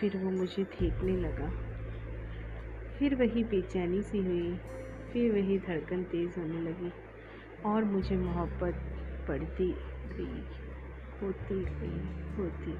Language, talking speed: Hindi, 115 wpm